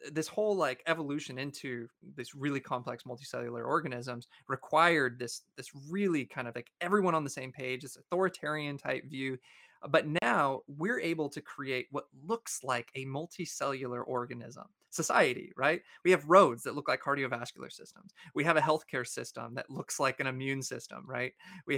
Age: 20-39